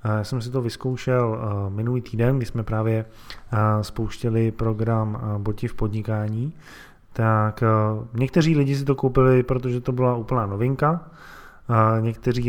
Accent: native